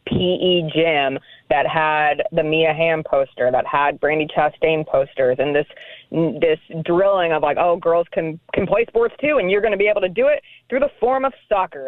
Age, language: 20-39, English